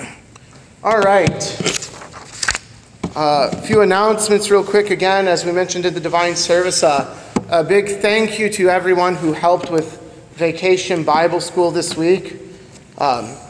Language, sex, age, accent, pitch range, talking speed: English, male, 30-49, American, 150-185 Hz, 140 wpm